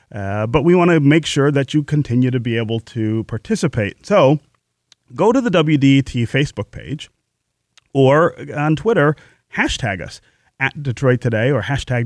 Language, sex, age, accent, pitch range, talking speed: English, male, 30-49, American, 110-145 Hz, 160 wpm